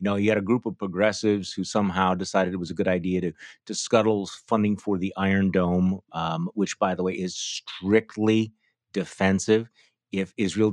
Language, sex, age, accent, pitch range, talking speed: English, male, 30-49, American, 90-110 Hz, 185 wpm